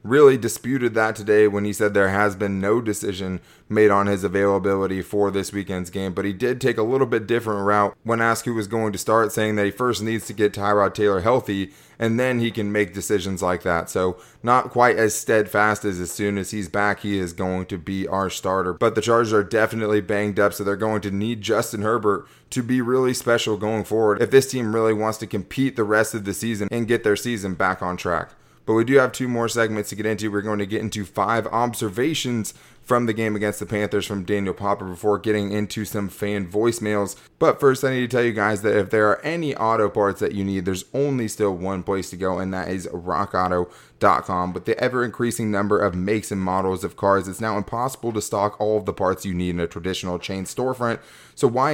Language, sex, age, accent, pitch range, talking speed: English, male, 20-39, American, 100-115 Hz, 235 wpm